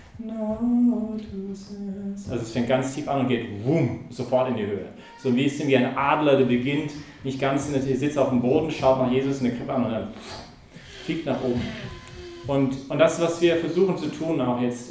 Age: 40-59